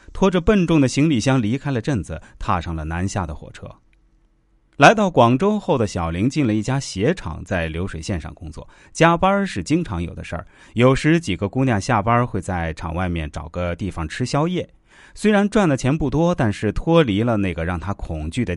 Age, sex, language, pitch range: 30-49, male, Chinese, 90-145 Hz